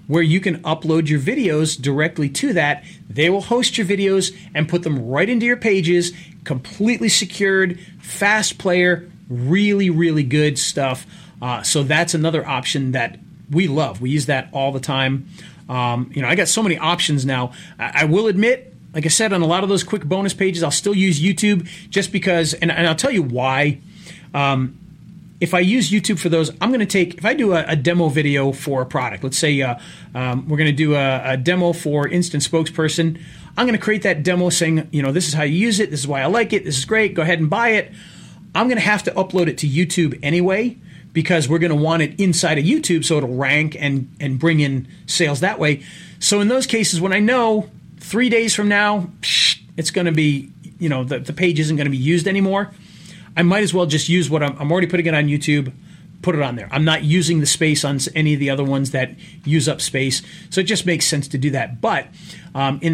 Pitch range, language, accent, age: 145-185 Hz, English, American, 30-49